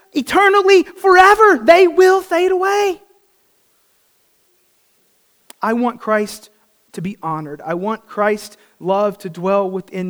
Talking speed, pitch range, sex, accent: 115 wpm, 180-240 Hz, male, American